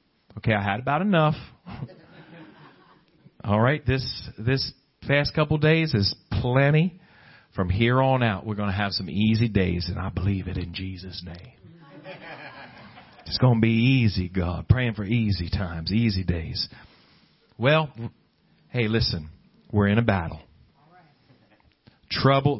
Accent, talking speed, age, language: American, 140 wpm, 40-59, English